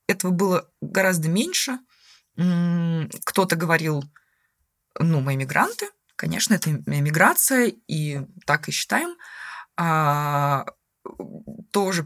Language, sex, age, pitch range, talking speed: Russian, female, 20-39, 150-195 Hz, 90 wpm